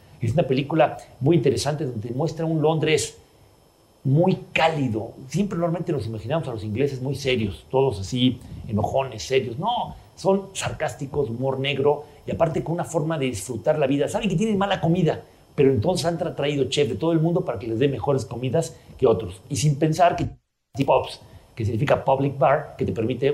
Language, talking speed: Spanish, 185 wpm